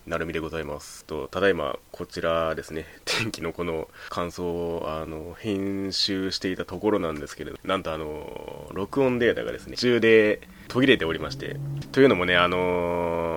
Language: Japanese